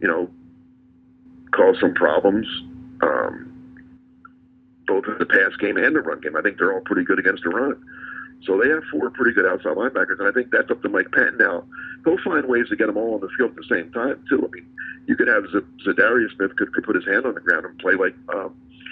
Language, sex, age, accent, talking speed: English, male, 50-69, American, 240 wpm